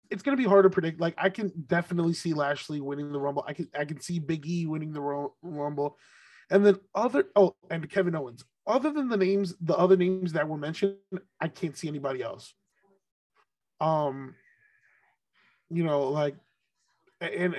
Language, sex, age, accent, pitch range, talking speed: English, male, 20-39, American, 145-185 Hz, 175 wpm